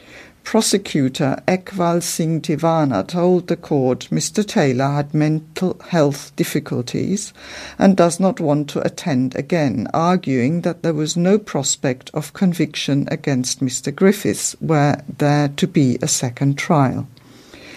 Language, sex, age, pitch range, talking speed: English, female, 50-69, 140-180 Hz, 125 wpm